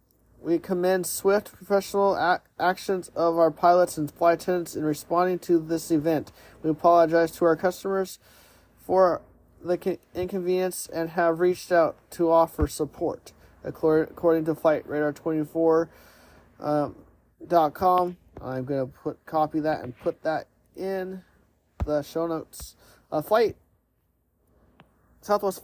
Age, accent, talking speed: 30-49, American, 125 wpm